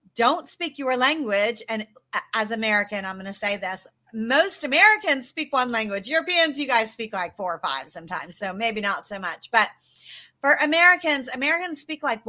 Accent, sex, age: American, female, 40-59